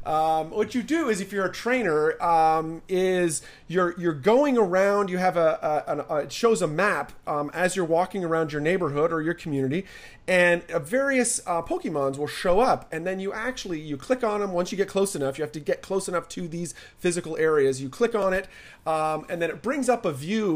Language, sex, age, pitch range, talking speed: English, male, 30-49, 145-185 Hz, 230 wpm